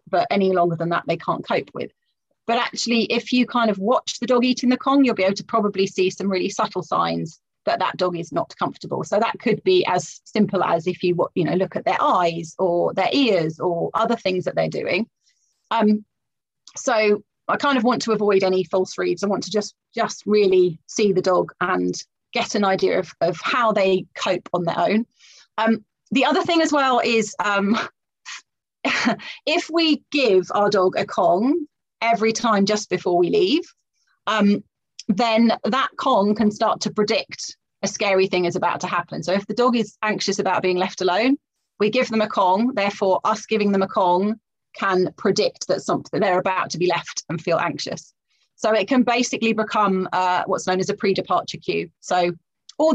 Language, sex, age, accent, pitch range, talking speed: Ukrainian, female, 30-49, British, 185-230 Hz, 200 wpm